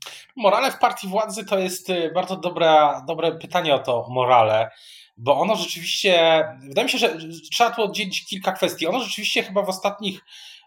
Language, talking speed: Polish, 170 wpm